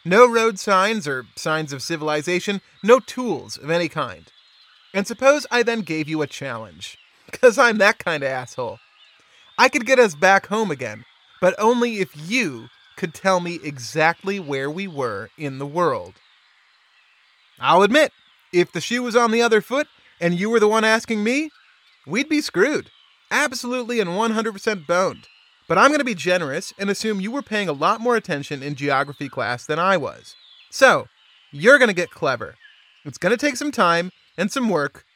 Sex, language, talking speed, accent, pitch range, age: male, English, 185 wpm, American, 160-240 Hz, 30-49